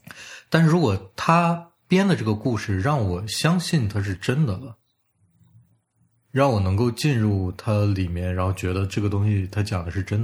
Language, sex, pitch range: Chinese, male, 100-135 Hz